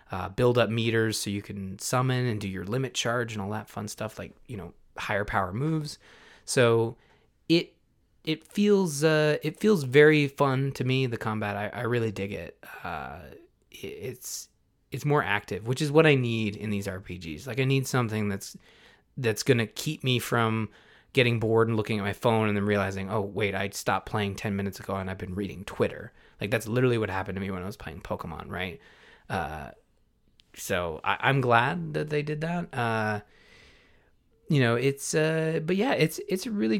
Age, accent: 20-39, American